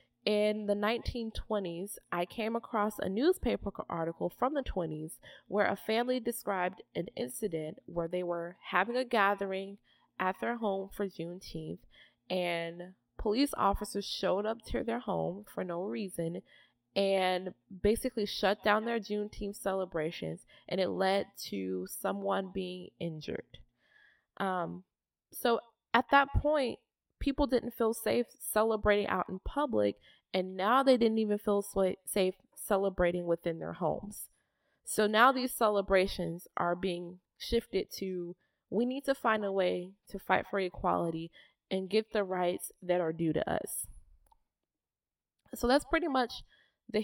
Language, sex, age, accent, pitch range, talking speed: English, female, 20-39, American, 180-225 Hz, 140 wpm